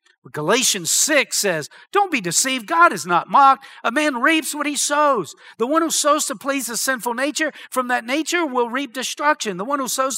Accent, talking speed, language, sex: American, 210 wpm, English, male